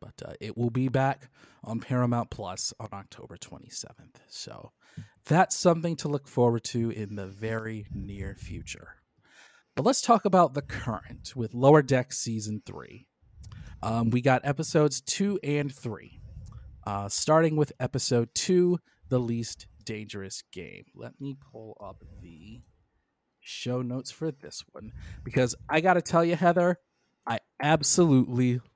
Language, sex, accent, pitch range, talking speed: English, male, American, 115-155 Hz, 145 wpm